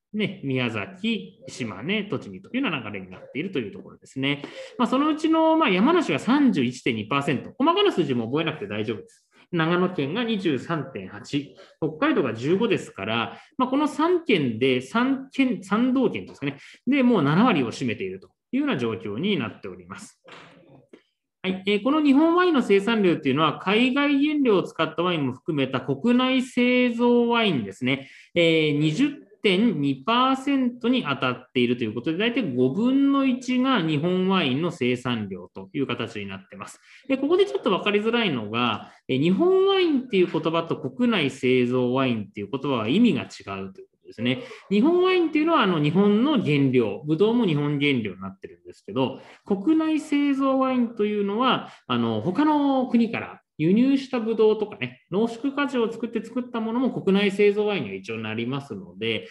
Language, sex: Japanese, male